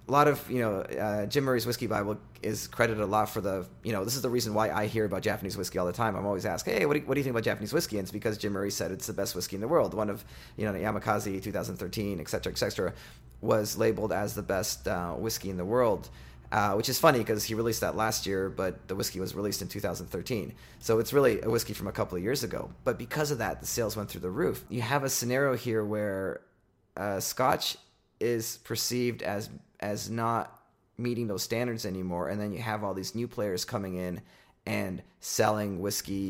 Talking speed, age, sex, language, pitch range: 240 wpm, 30-49, male, English, 95-115 Hz